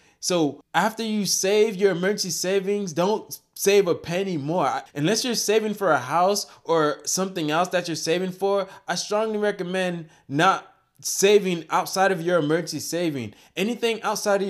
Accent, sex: American, male